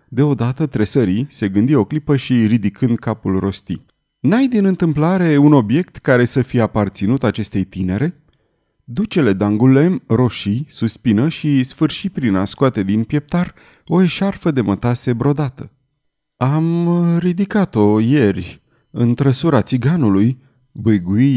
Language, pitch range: Romanian, 105-155 Hz